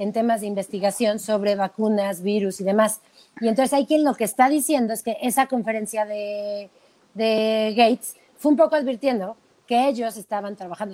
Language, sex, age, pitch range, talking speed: Spanish, female, 30-49, 210-270 Hz, 175 wpm